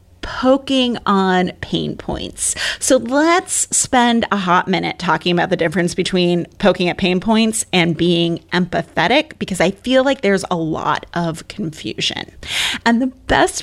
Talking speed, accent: 150 wpm, American